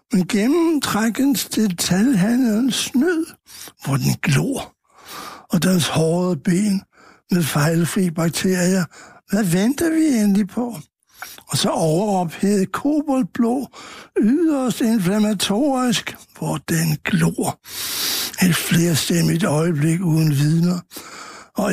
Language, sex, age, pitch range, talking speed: Danish, male, 60-79, 165-230 Hz, 95 wpm